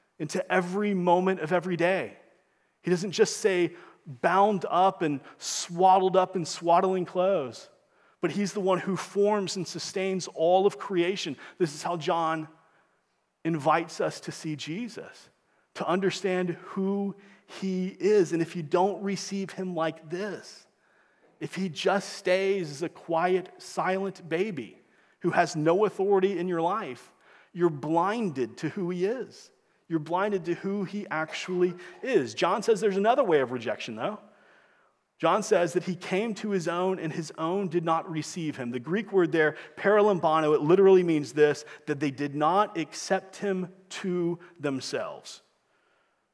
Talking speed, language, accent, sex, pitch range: 155 wpm, English, American, male, 165-195 Hz